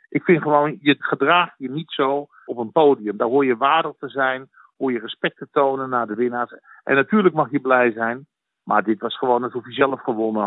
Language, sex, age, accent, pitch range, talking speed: Dutch, male, 50-69, Dutch, 115-140 Hz, 225 wpm